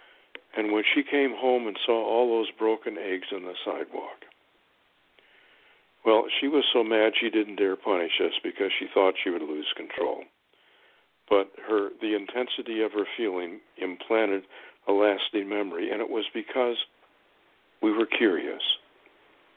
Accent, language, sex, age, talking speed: American, English, male, 60-79, 145 wpm